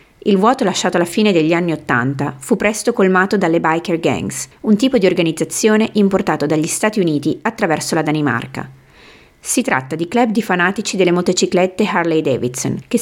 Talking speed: 165 wpm